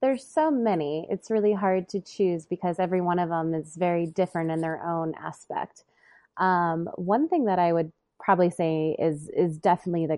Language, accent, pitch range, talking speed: English, American, 155-185 Hz, 190 wpm